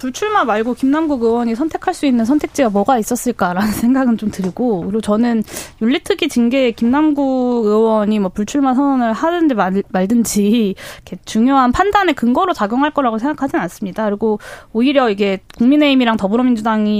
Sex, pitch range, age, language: female, 215-295 Hz, 20-39, Korean